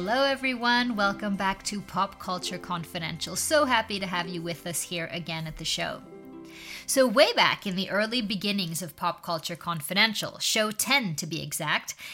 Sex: female